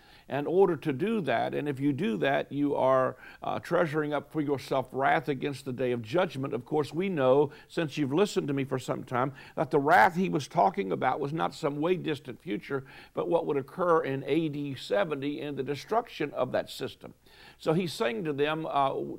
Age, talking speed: 60-79, 210 wpm